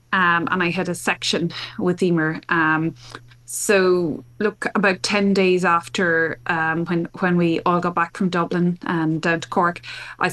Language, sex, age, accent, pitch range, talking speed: English, female, 20-39, Irish, 170-205 Hz, 170 wpm